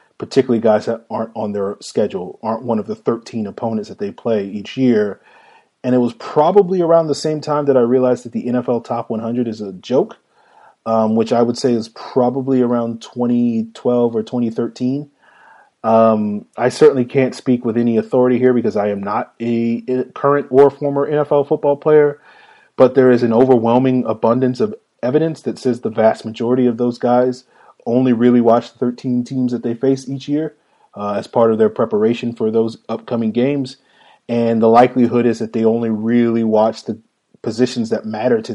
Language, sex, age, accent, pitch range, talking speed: English, male, 30-49, American, 115-130 Hz, 185 wpm